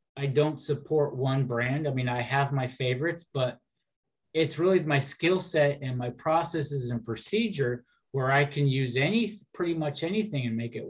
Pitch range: 120-150 Hz